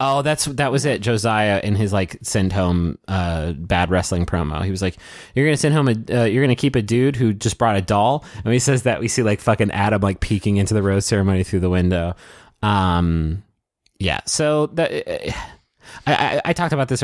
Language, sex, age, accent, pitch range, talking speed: English, male, 30-49, American, 95-120 Hz, 220 wpm